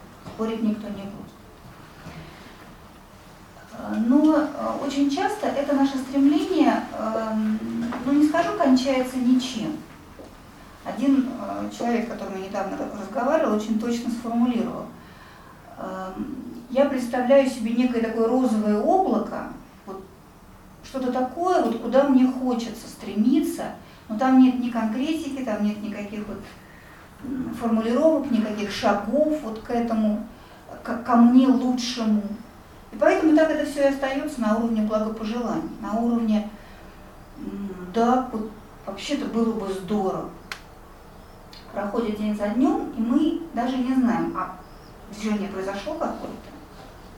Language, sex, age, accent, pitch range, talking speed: Russian, female, 40-59, native, 215-270 Hz, 115 wpm